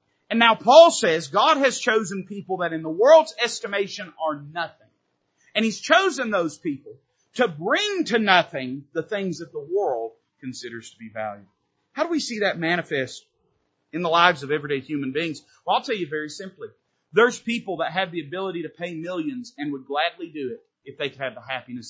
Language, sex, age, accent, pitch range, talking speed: English, male, 40-59, American, 140-200 Hz, 195 wpm